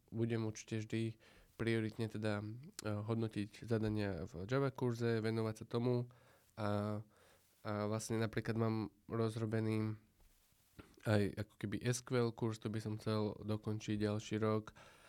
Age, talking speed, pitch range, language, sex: 20-39, 125 wpm, 105-115 Hz, Slovak, male